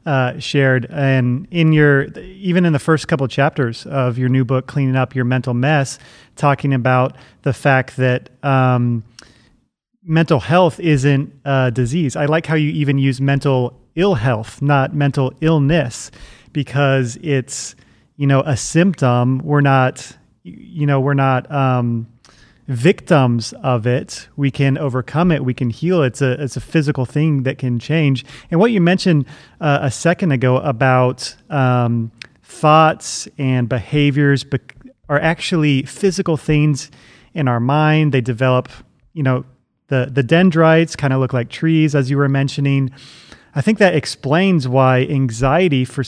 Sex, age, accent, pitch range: male, 30-49, American, 130-155 Hz